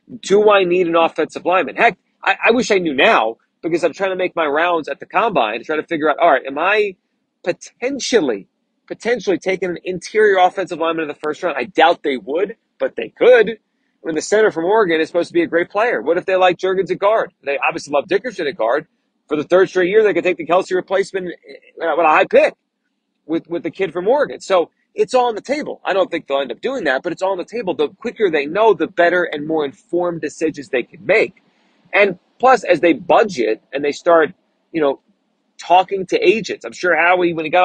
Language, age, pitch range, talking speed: English, 30-49, 165-220 Hz, 235 wpm